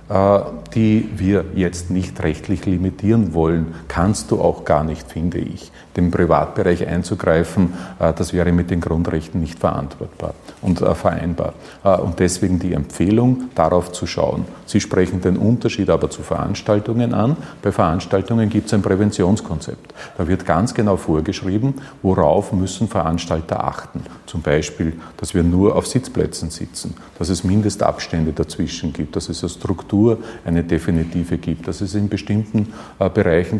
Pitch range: 90-110 Hz